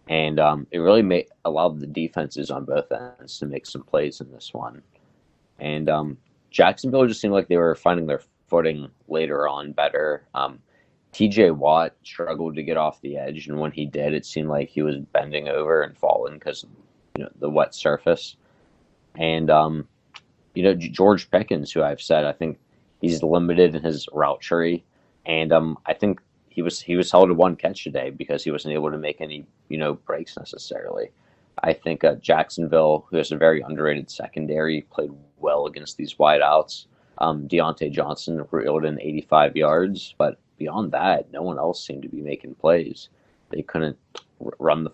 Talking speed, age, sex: 185 wpm, 20-39, male